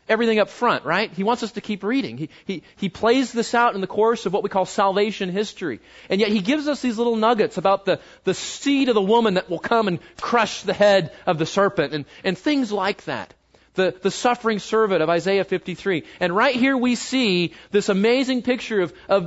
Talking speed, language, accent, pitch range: 225 wpm, English, American, 175-225 Hz